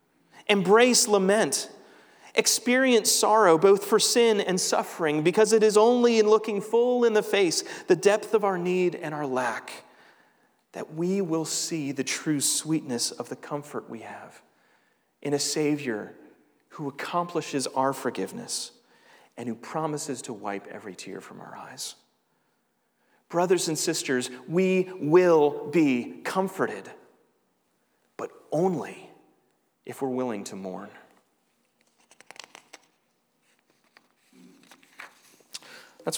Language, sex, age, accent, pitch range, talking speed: English, male, 40-59, American, 125-185 Hz, 120 wpm